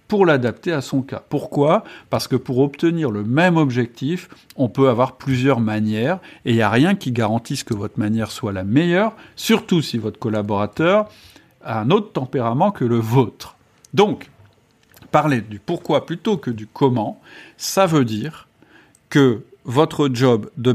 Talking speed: 165 wpm